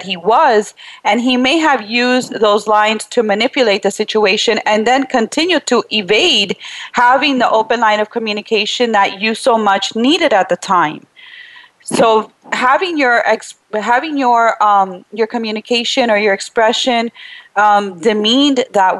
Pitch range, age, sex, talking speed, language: 205-245 Hz, 30-49, female, 135 wpm, English